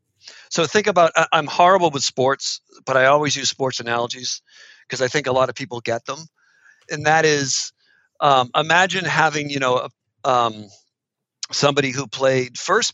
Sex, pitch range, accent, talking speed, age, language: male, 125-160 Hz, American, 165 wpm, 50-69, English